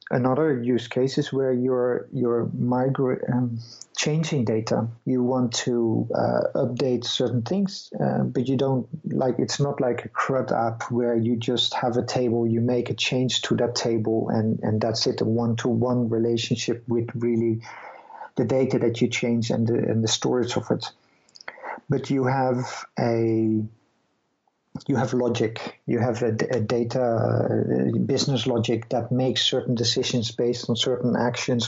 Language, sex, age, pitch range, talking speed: English, male, 50-69, 115-130 Hz, 165 wpm